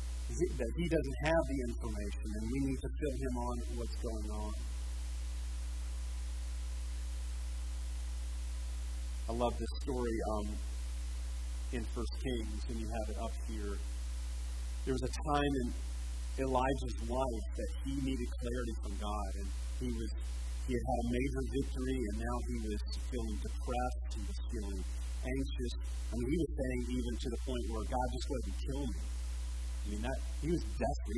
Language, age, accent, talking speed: English, 30-49, American, 165 wpm